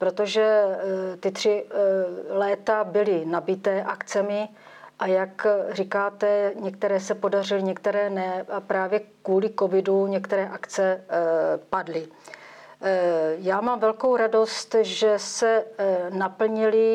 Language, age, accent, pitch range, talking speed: Czech, 40-59, native, 185-210 Hz, 105 wpm